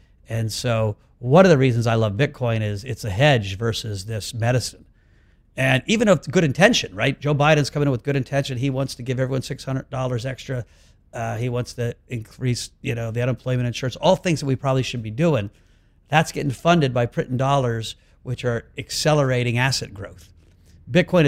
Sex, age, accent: male, 50-69, American